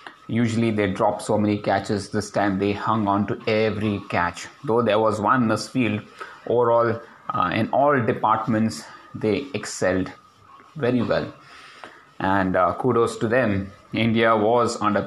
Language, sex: English, male